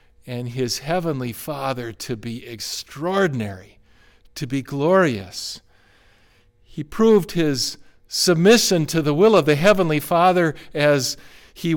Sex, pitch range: male, 115-155 Hz